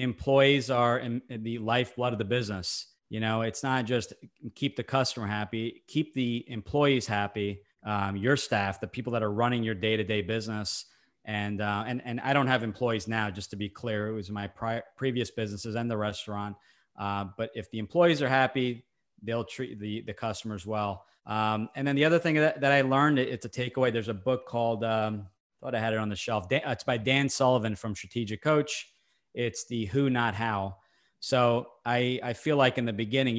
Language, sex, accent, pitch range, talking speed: English, male, American, 110-125 Hz, 200 wpm